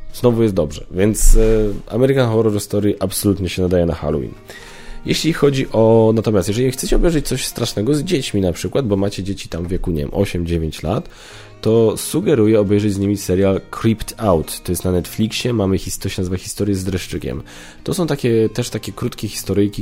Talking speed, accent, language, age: 190 wpm, native, Polish, 20-39